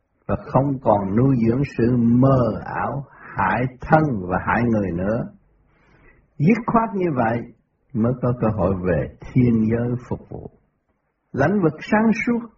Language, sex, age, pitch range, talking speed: Vietnamese, male, 60-79, 115-165 Hz, 145 wpm